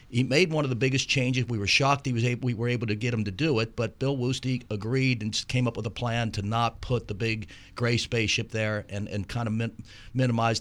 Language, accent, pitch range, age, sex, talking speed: English, American, 105-130 Hz, 50-69, male, 240 wpm